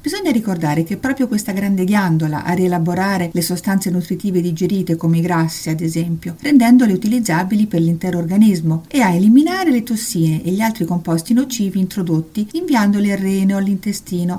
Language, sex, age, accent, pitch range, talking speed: Italian, female, 50-69, native, 170-240 Hz, 165 wpm